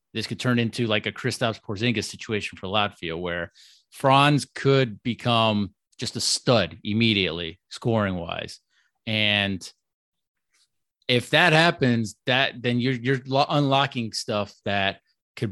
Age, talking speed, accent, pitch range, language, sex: 30-49, 130 wpm, American, 100-125 Hz, English, male